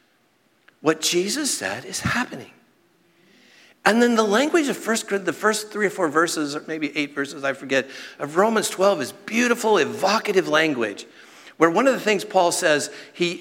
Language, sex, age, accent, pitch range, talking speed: English, male, 50-69, American, 145-215 Hz, 170 wpm